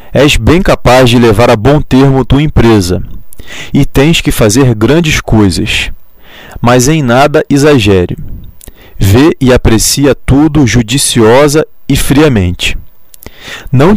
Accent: Brazilian